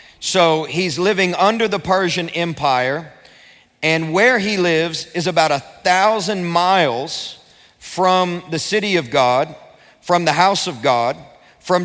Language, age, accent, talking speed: English, 40-59, American, 135 wpm